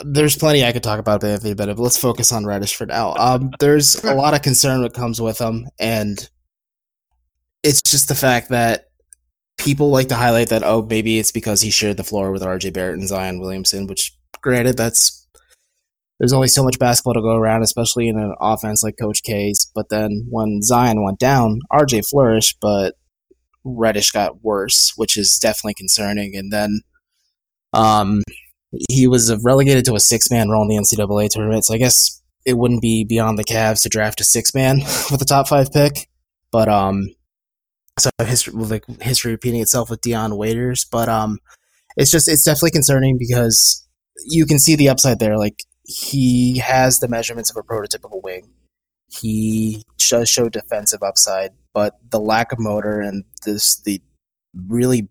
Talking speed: 180 wpm